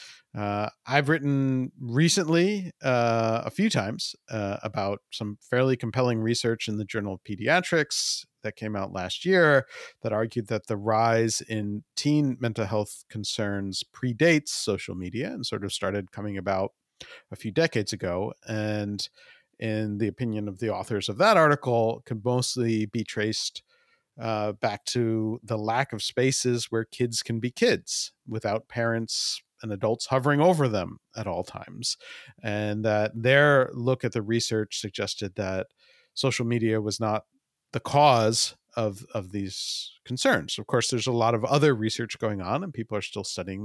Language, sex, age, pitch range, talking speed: English, male, 40-59, 105-130 Hz, 160 wpm